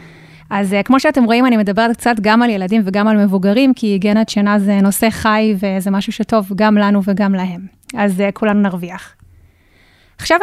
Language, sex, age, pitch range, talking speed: Hebrew, female, 20-39, 200-250 Hz, 175 wpm